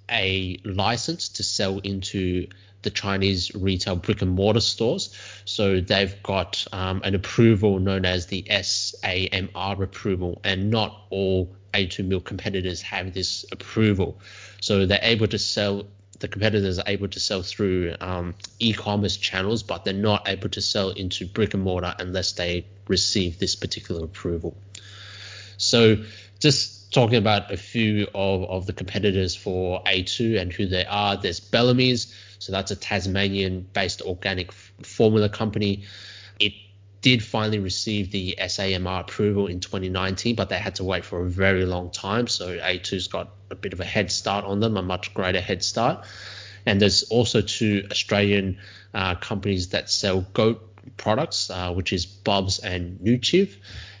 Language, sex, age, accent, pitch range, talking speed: English, male, 20-39, Australian, 95-105 Hz, 150 wpm